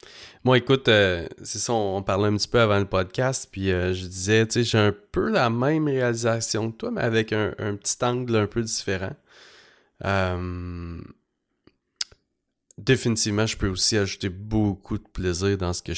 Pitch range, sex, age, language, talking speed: 95-110 Hz, male, 30-49, English, 185 wpm